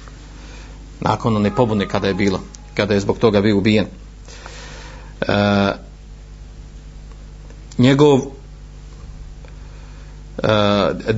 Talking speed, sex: 80 wpm, male